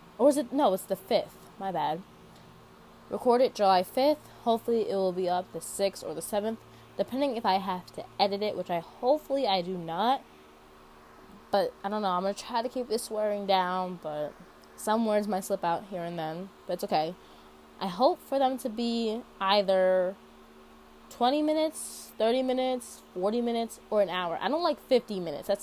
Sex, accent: female, American